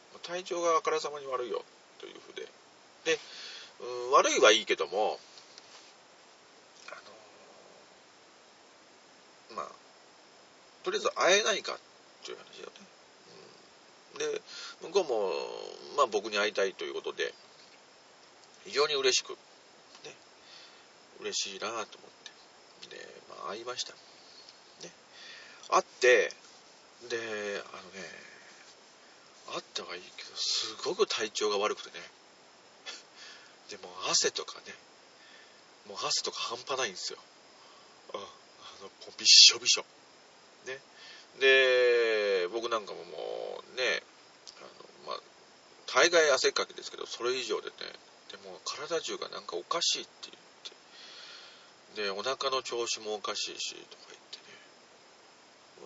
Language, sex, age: Japanese, male, 40-59